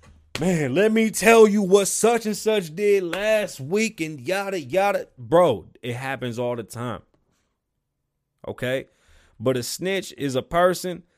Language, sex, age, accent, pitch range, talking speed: English, male, 30-49, American, 150-205 Hz, 140 wpm